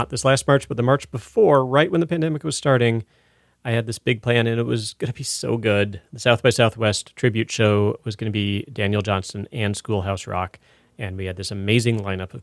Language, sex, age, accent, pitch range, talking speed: English, male, 30-49, American, 105-150 Hz, 235 wpm